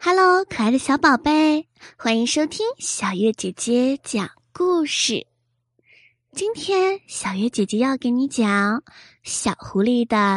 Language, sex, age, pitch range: Chinese, female, 20-39, 200-310 Hz